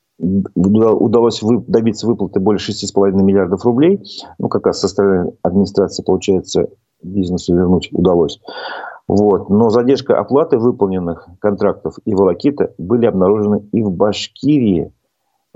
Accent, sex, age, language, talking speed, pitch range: native, male, 40-59, Russian, 110 wpm, 90-110 Hz